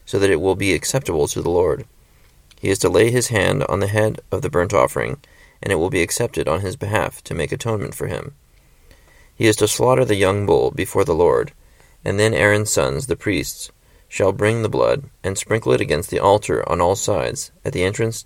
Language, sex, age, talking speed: English, male, 30-49, 220 wpm